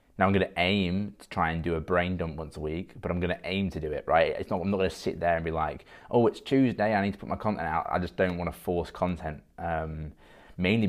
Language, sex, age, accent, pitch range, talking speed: English, male, 20-39, British, 80-95 Hz, 285 wpm